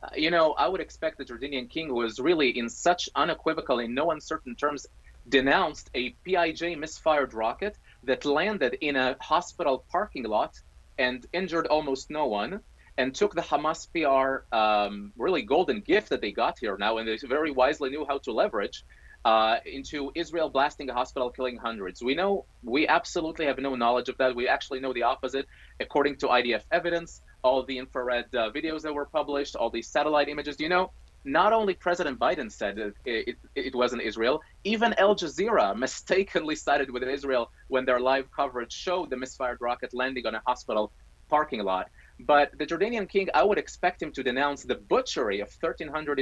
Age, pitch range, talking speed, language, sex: 30-49, 125-160 Hz, 185 wpm, English, male